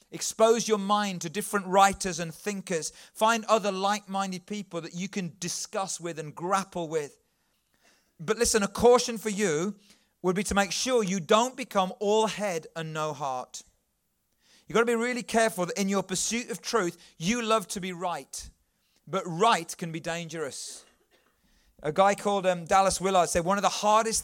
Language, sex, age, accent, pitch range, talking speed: English, male, 40-59, British, 170-210 Hz, 180 wpm